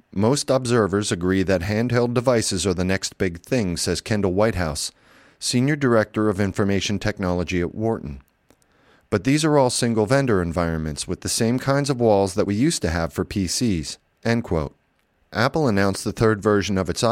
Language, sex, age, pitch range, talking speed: English, male, 40-59, 90-115 Hz, 170 wpm